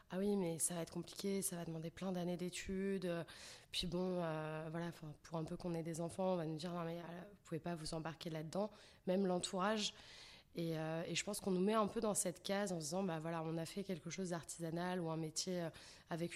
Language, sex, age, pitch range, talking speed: French, female, 20-39, 165-190 Hz, 260 wpm